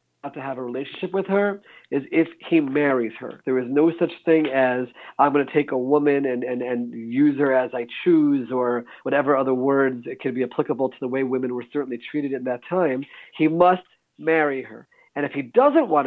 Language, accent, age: English, American, 50-69